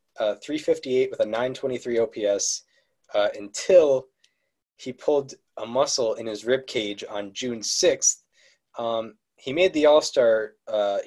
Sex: male